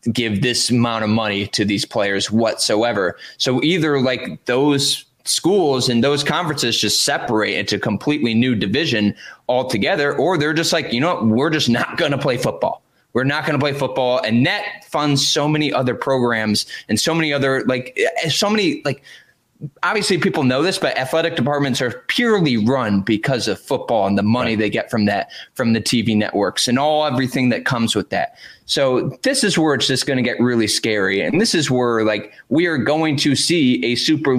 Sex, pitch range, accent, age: male, 115-150 Hz, American, 20-39